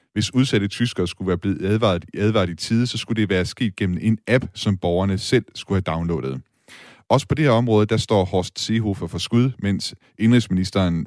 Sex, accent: male, native